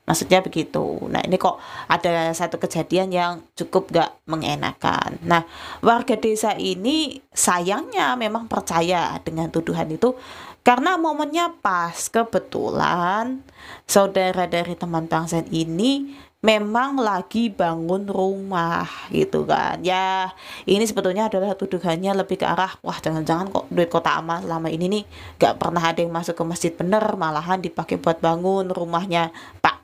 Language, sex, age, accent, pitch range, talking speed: Indonesian, female, 20-39, native, 170-225 Hz, 135 wpm